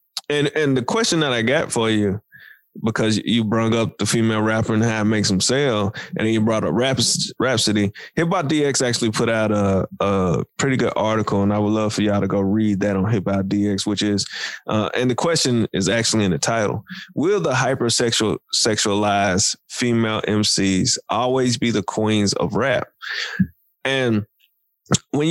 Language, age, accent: English, 20-39, American